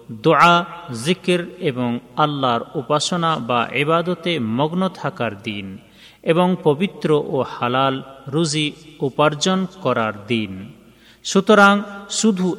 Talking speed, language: 85 wpm, Bengali